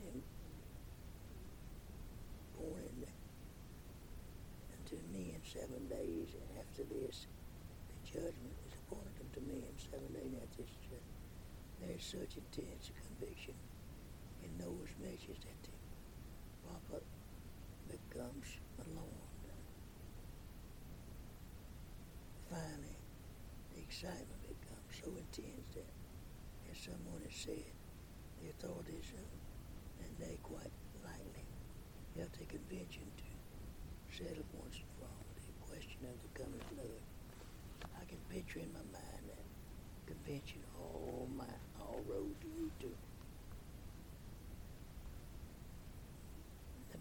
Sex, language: male, English